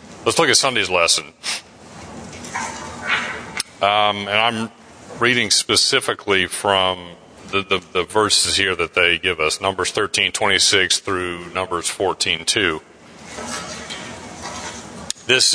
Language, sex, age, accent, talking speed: English, male, 40-59, American, 110 wpm